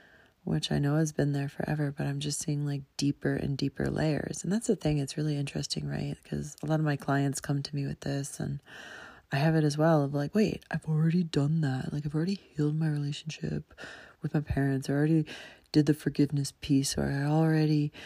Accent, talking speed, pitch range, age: American, 220 wpm, 140-175 Hz, 30-49